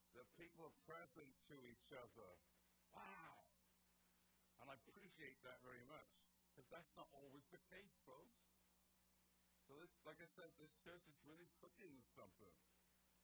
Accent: American